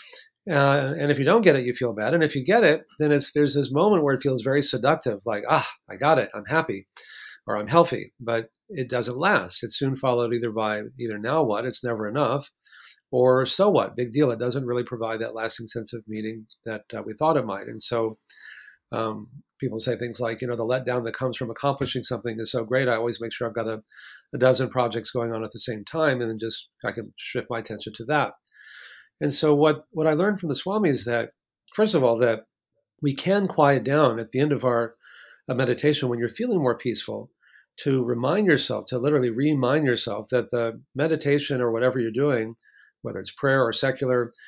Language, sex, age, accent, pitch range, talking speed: English, male, 40-59, American, 115-145 Hz, 220 wpm